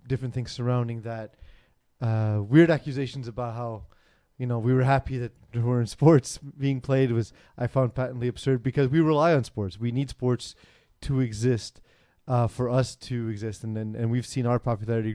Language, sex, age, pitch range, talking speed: English, male, 30-49, 110-130 Hz, 200 wpm